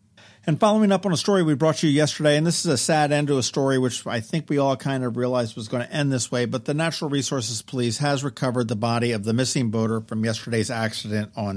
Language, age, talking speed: English, 50-69, 260 wpm